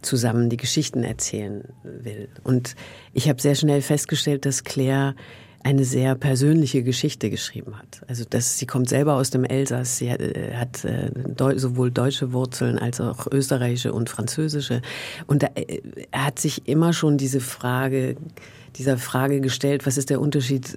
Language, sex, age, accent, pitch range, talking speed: German, female, 50-69, German, 130-150 Hz, 160 wpm